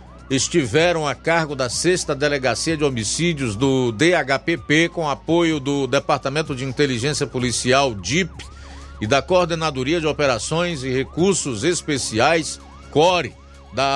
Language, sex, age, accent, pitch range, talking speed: Portuguese, male, 50-69, Brazilian, 110-155 Hz, 120 wpm